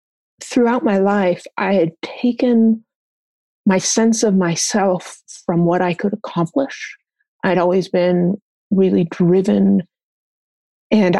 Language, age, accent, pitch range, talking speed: English, 30-49, American, 175-215 Hz, 115 wpm